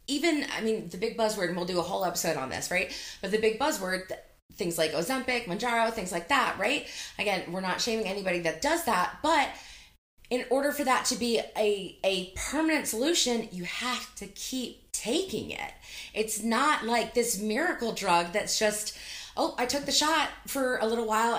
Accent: American